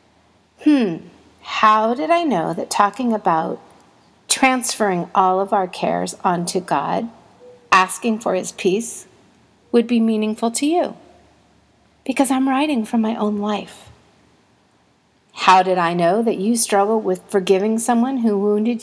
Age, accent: 50-69, American